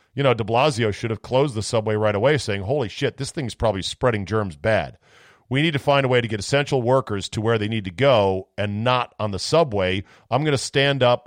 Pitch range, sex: 105-140 Hz, male